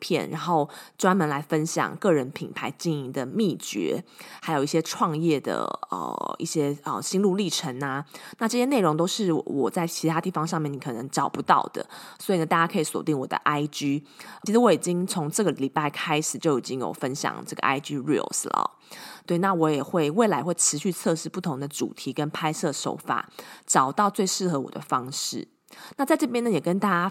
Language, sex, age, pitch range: Chinese, female, 20-39, 150-195 Hz